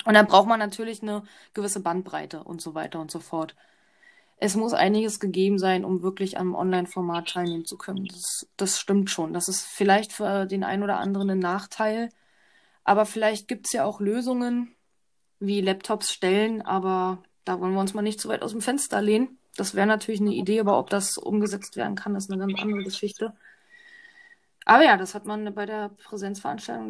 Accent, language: German, German